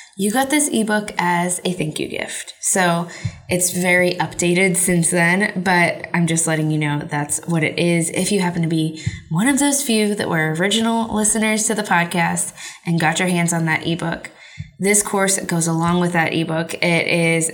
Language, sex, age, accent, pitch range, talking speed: English, female, 20-39, American, 165-215 Hz, 195 wpm